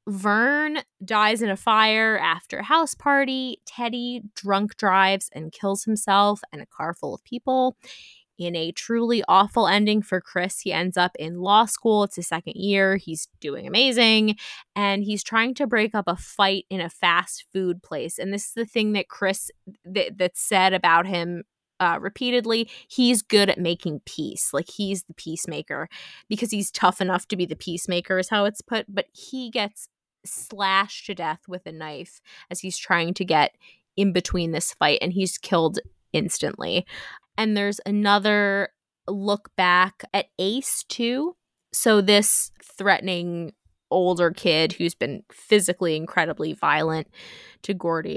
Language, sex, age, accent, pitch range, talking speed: English, female, 20-39, American, 180-220 Hz, 165 wpm